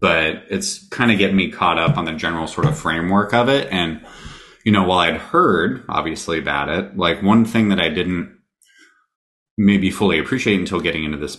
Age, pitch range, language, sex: 30-49, 85-100 Hz, English, male